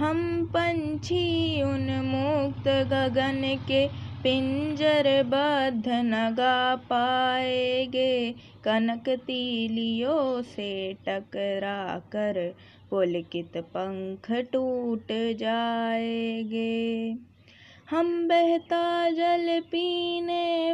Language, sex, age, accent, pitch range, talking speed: Hindi, female, 20-39, native, 220-270 Hz, 65 wpm